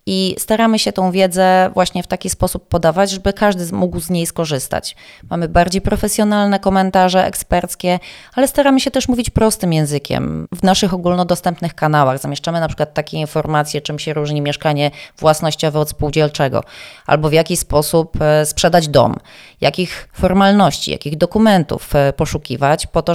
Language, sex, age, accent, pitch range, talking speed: Polish, female, 20-39, native, 150-190 Hz, 150 wpm